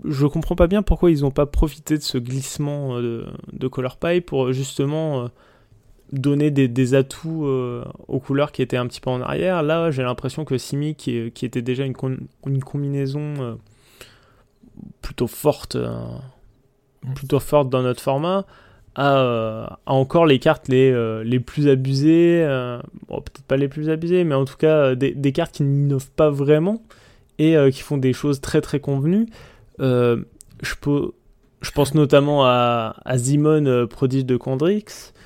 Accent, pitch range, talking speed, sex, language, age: French, 125-150 Hz, 180 wpm, male, French, 20-39